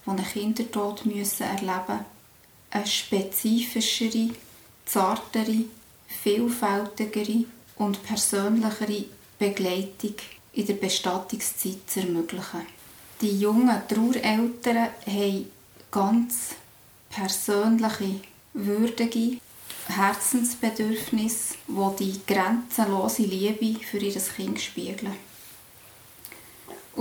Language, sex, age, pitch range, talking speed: German, female, 30-49, 195-230 Hz, 75 wpm